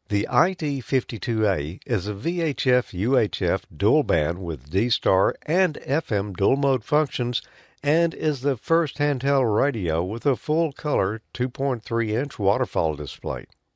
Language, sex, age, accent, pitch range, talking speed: English, male, 50-69, American, 95-140 Hz, 115 wpm